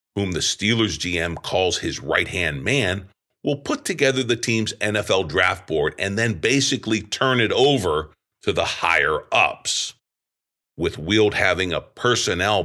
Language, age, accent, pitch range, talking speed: English, 50-69, American, 90-115 Hz, 140 wpm